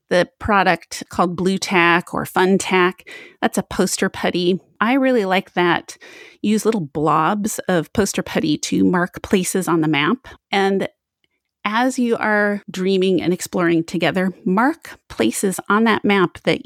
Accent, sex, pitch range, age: American, female, 180-295 Hz, 30-49